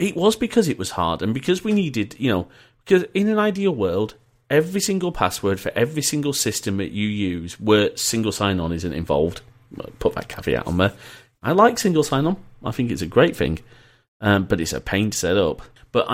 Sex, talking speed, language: male, 210 wpm, English